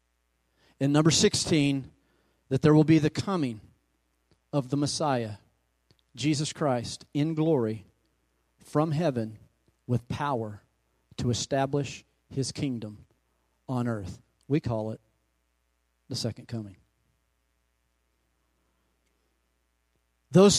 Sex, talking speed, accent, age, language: male, 95 wpm, American, 40-59, English